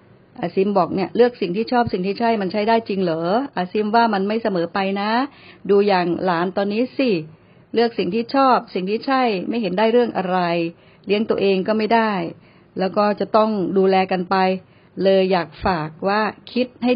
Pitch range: 180-225 Hz